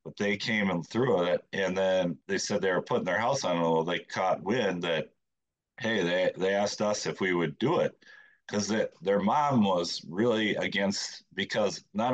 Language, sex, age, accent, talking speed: English, male, 40-59, American, 195 wpm